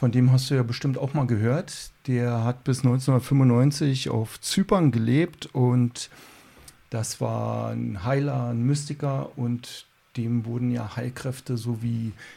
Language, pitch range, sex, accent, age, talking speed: German, 120-140 Hz, male, German, 50-69, 140 wpm